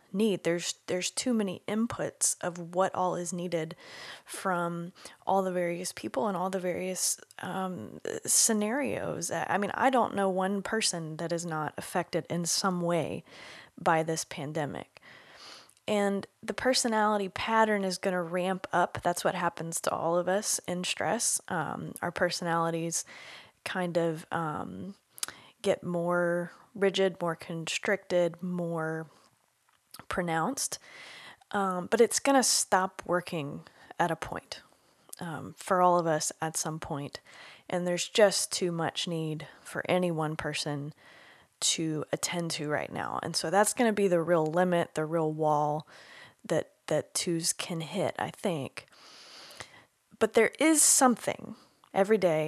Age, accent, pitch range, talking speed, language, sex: 20-39, American, 165-195 Hz, 145 wpm, English, female